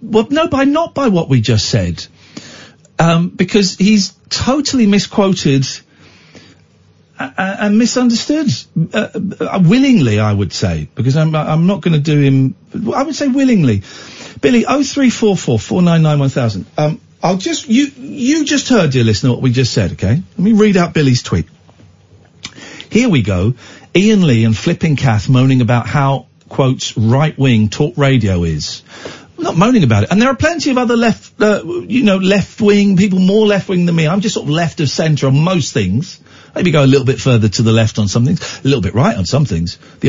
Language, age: English, 50-69